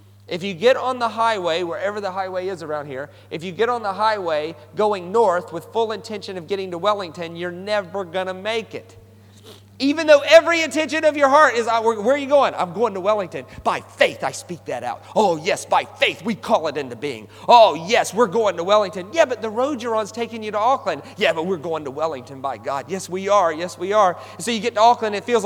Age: 40-59